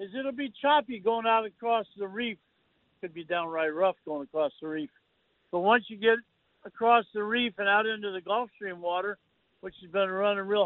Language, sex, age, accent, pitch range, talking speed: English, male, 50-69, American, 185-225 Hz, 205 wpm